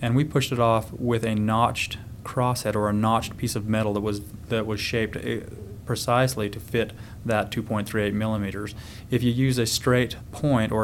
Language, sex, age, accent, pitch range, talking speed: English, male, 30-49, American, 105-120 Hz, 185 wpm